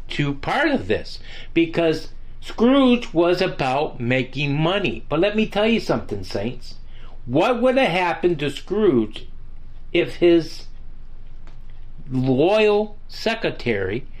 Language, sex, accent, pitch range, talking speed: English, male, American, 115-180 Hz, 115 wpm